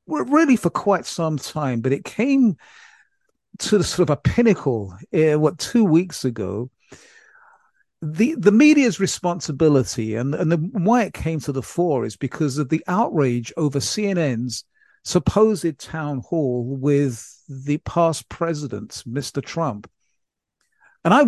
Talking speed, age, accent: 140 wpm, 50-69, British